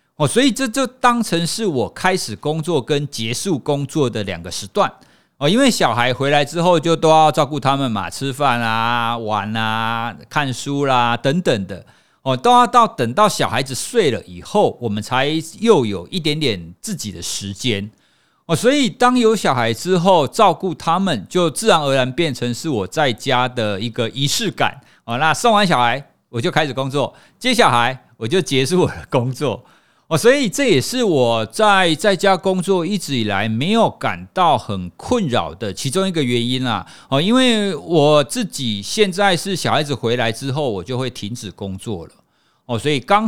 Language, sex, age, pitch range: Chinese, male, 50-69, 120-185 Hz